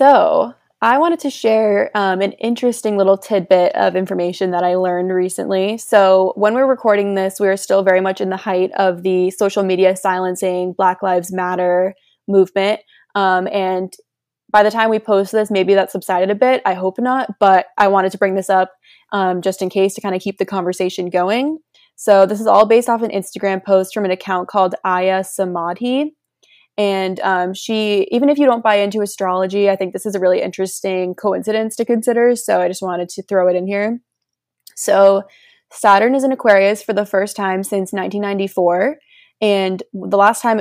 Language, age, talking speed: English, 20-39, 190 wpm